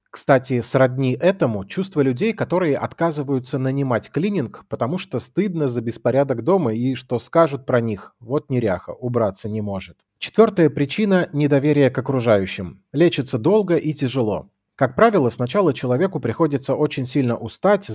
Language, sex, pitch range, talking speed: Russian, male, 120-155 Hz, 140 wpm